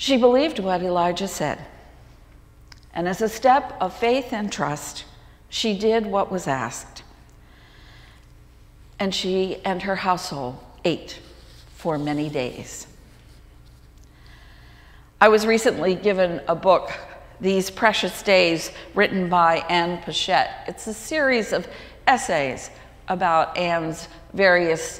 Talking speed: 115 wpm